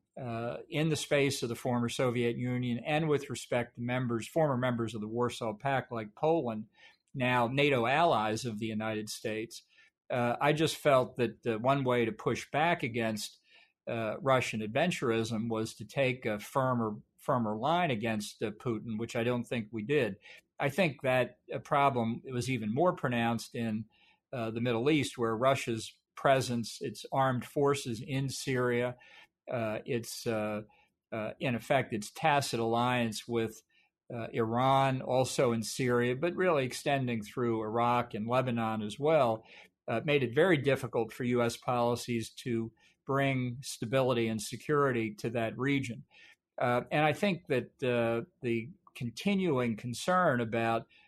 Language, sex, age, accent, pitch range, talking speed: English, male, 50-69, American, 115-135 Hz, 155 wpm